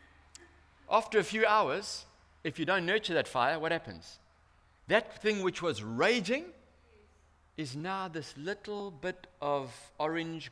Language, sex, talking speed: English, male, 135 wpm